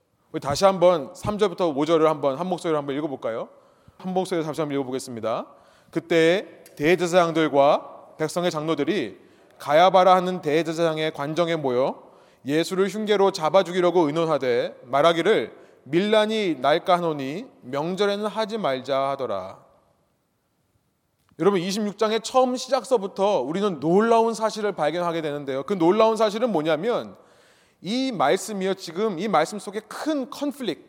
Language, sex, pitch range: Korean, male, 160-215 Hz